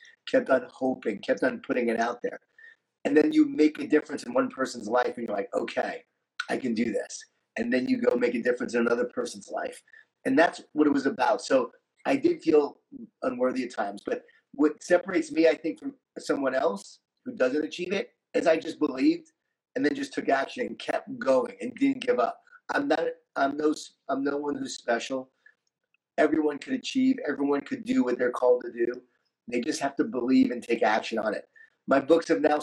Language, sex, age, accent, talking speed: English, male, 30-49, American, 210 wpm